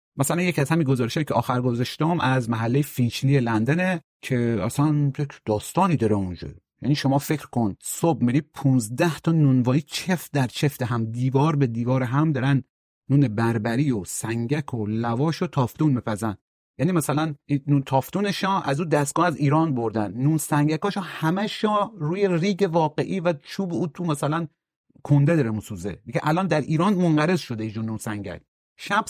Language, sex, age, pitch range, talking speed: Persian, male, 40-59, 125-165 Hz, 165 wpm